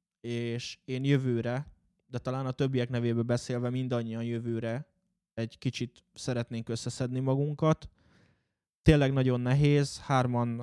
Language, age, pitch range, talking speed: Hungarian, 20-39, 115-125 Hz, 115 wpm